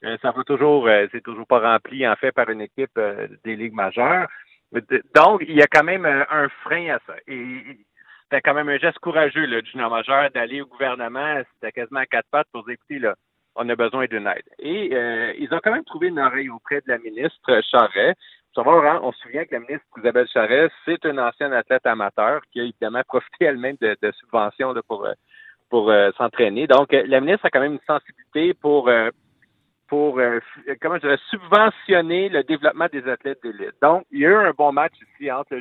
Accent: Canadian